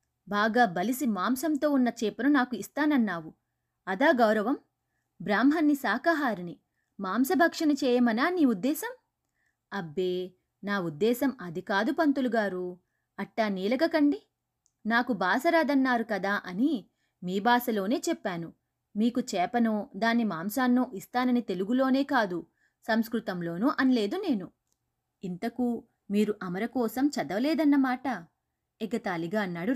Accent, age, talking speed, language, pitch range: native, 20-39, 95 wpm, Telugu, 200-275 Hz